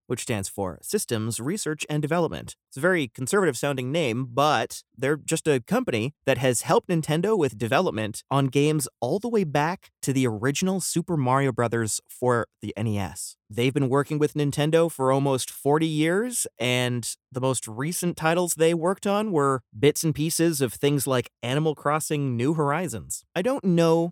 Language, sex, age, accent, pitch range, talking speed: English, male, 30-49, American, 120-160 Hz, 175 wpm